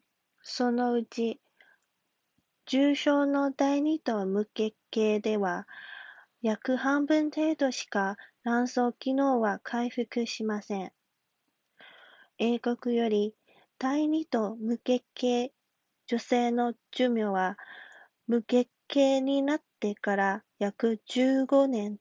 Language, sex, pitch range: Chinese, female, 215-275 Hz